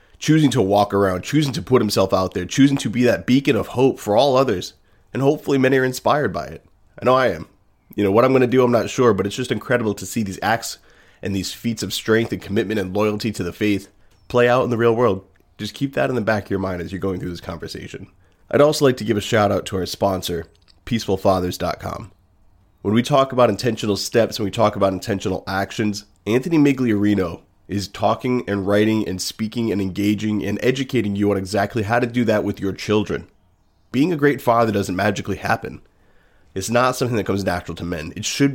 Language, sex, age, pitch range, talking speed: English, male, 30-49, 95-120 Hz, 225 wpm